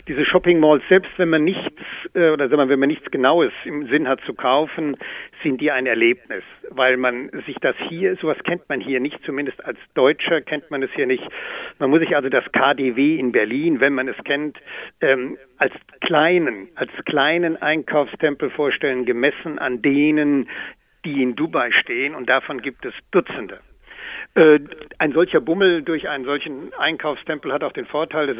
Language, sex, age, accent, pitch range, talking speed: German, male, 60-79, German, 140-195 Hz, 175 wpm